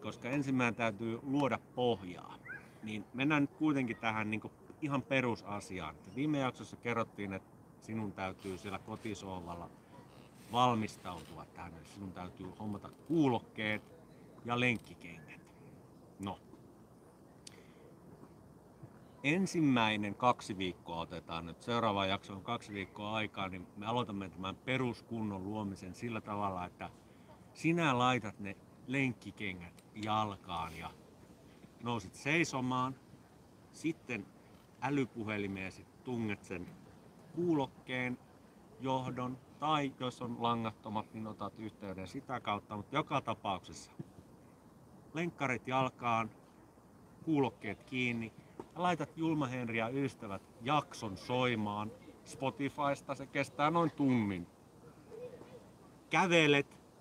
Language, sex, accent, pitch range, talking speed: Finnish, male, native, 100-135 Hz, 100 wpm